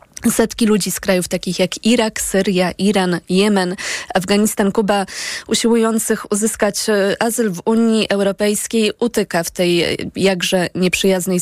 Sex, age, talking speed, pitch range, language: female, 20-39, 120 wpm, 180-210 Hz, Polish